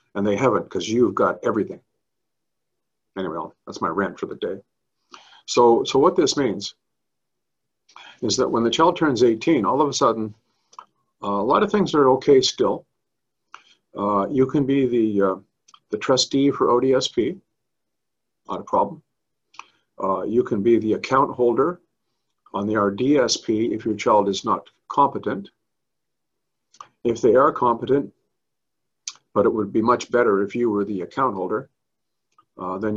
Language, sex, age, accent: English, male, 50-69, American